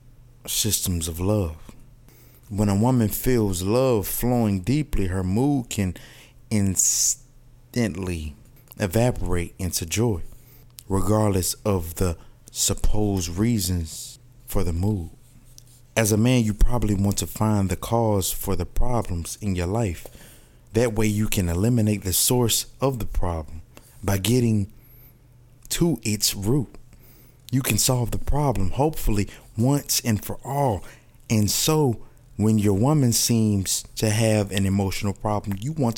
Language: English